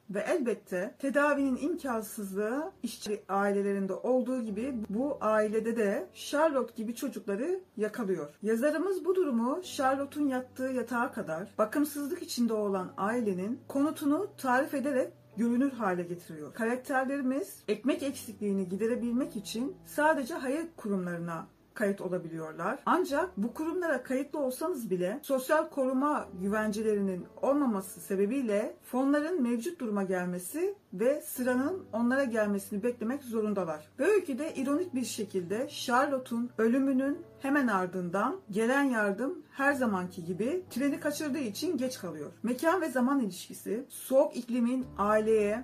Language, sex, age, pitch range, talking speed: Turkish, female, 40-59, 210-280 Hz, 120 wpm